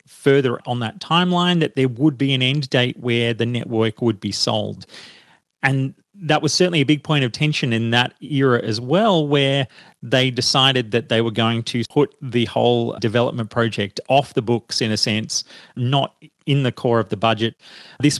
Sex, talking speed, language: male, 190 wpm, English